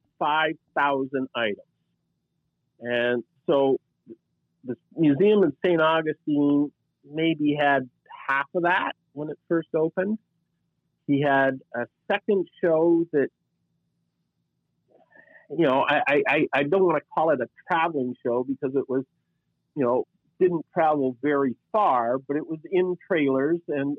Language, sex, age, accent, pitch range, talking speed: English, male, 50-69, American, 125-160 Hz, 130 wpm